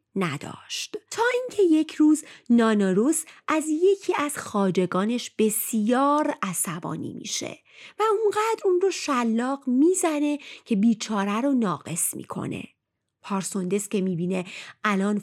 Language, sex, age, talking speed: Persian, female, 30-49, 110 wpm